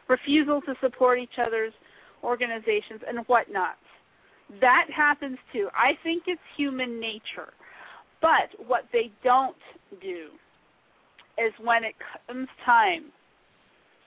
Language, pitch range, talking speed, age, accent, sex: English, 210-275 Hz, 110 wpm, 40-59, American, female